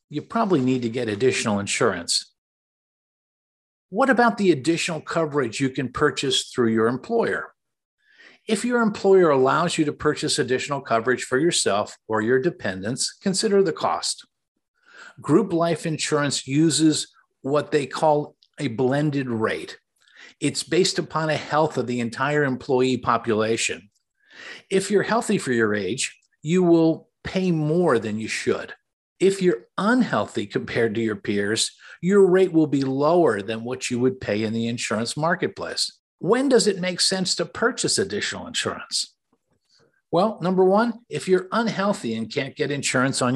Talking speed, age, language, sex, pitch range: 150 wpm, 50-69, English, male, 130-190 Hz